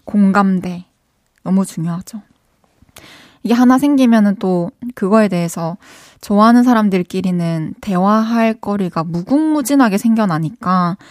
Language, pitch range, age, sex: Korean, 185-240 Hz, 20-39, female